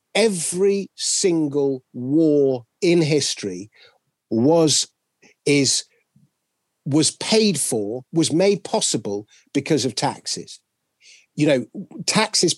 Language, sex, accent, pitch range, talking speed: English, male, British, 140-190 Hz, 90 wpm